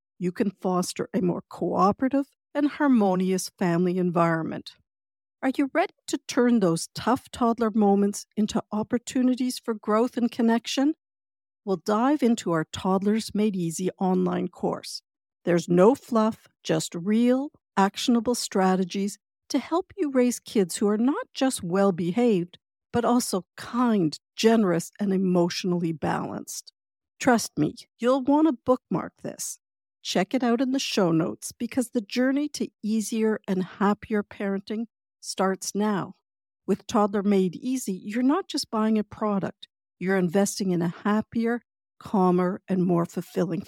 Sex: female